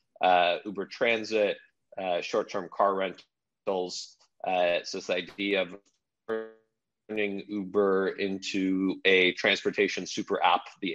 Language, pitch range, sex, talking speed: English, 95-105 Hz, male, 115 wpm